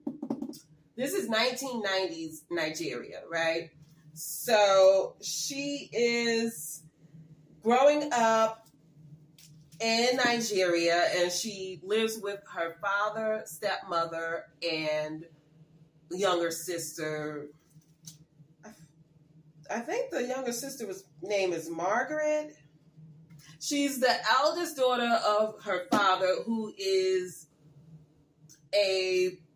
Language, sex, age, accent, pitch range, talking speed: English, female, 30-49, American, 155-220 Hz, 80 wpm